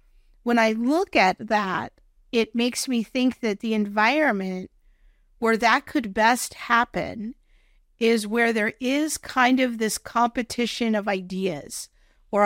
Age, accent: 50-69, American